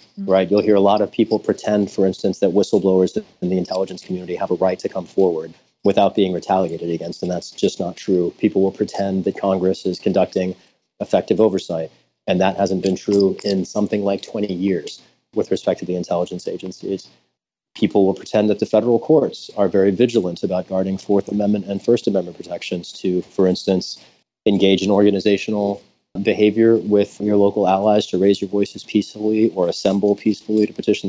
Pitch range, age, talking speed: 95-105 Hz, 30-49, 185 wpm